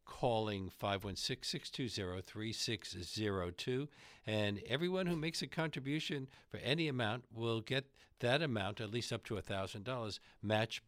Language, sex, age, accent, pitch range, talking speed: English, male, 60-79, American, 95-125 Hz, 115 wpm